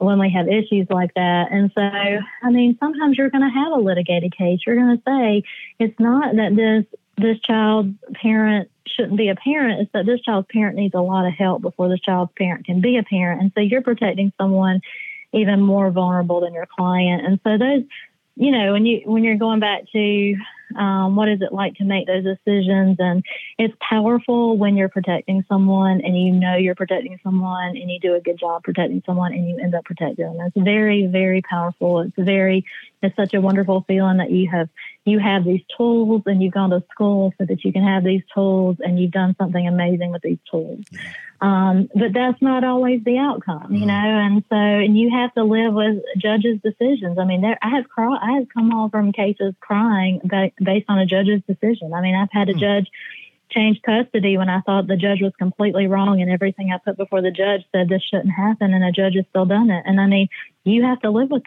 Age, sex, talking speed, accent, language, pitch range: 30-49, female, 225 wpm, American, English, 185-220 Hz